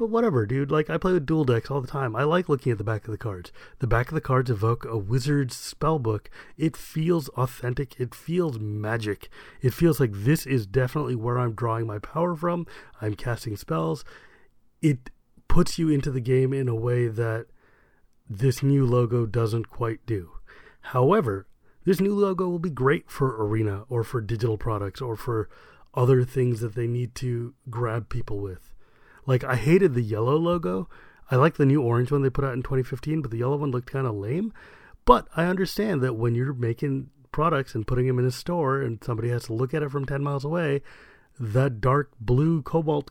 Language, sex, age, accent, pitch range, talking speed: English, male, 30-49, American, 115-145 Hz, 205 wpm